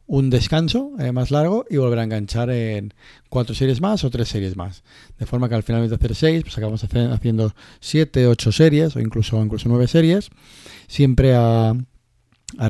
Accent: Spanish